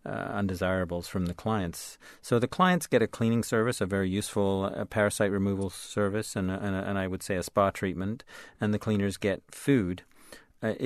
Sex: male